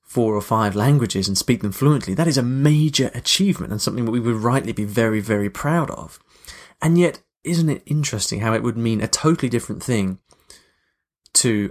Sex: male